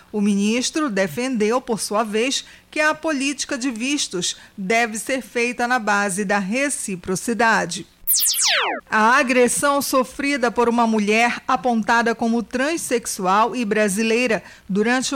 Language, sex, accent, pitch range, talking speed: Portuguese, female, Brazilian, 215-260 Hz, 120 wpm